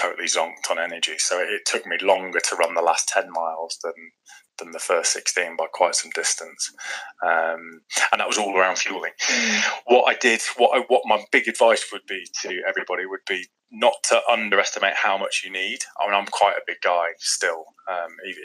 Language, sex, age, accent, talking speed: English, male, 20-39, British, 205 wpm